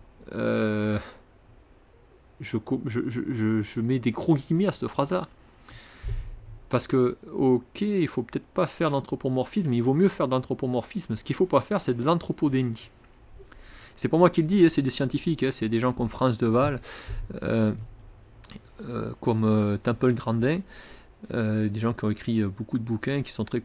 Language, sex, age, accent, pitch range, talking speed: French, male, 40-59, French, 115-135 Hz, 180 wpm